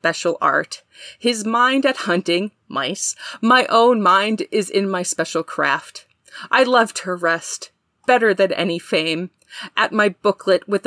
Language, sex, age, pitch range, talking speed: English, female, 30-49, 175-240 Hz, 150 wpm